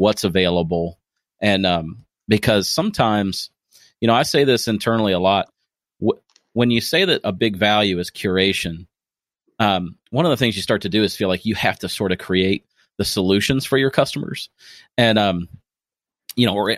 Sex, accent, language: male, American, English